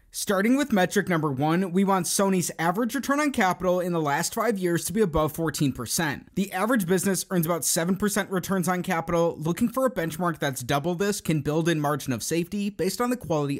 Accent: American